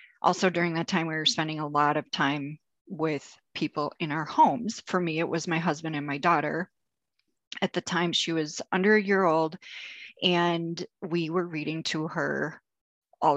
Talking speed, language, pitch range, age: 185 wpm, English, 155-200 Hz, 30-49